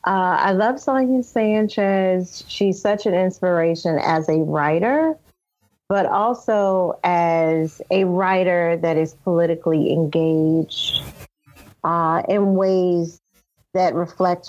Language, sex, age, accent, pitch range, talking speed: English, female, 30-49, American, 160-195 Hz, 110 wpm